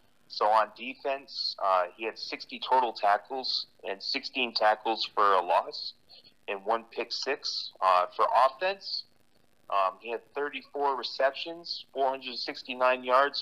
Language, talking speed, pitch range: English, 130 wpm, 95-120 Hz